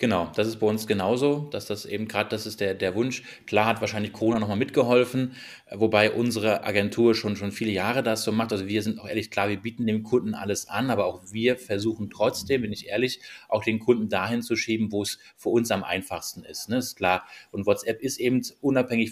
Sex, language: male, German